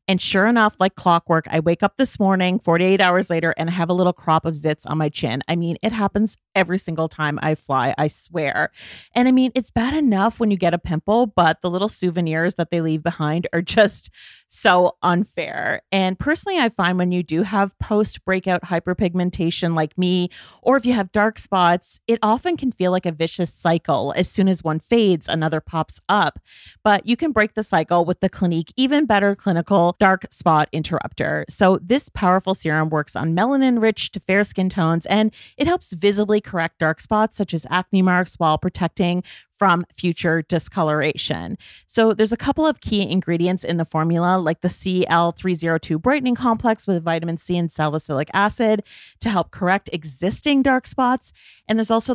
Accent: American